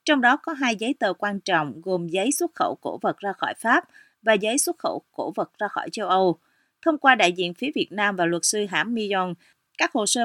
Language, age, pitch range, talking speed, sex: Vietnamese, 30-49, 185-265 Hz, 245 wpm, female